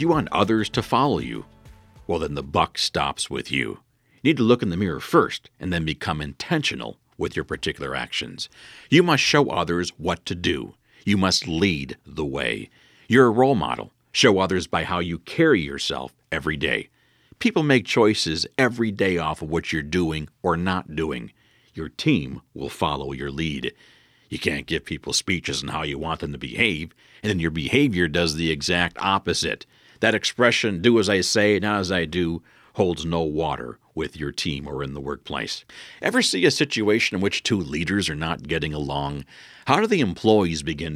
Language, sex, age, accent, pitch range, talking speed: English, male, 50-69, American, 75-105 Hz, 190 wpm